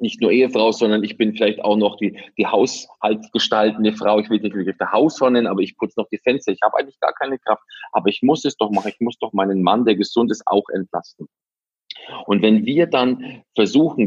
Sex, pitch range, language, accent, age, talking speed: male, 95-110 Hz, German, German, 40-59, 220 wpm